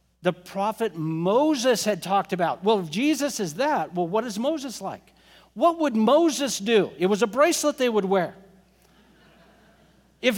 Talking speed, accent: 160 wpm, American